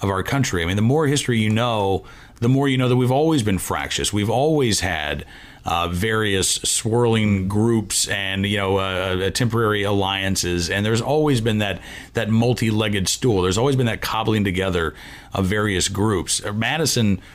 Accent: American